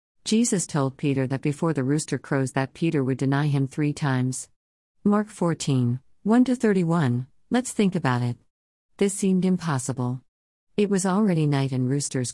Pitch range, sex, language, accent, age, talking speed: 130-160 Hz, female, English, American, 50-69, 150 wpm